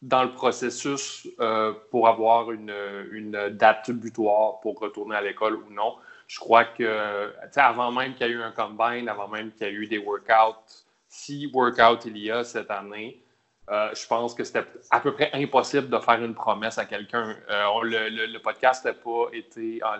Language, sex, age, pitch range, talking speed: French, male, 20-39, 110-125 Hz, 200 wpm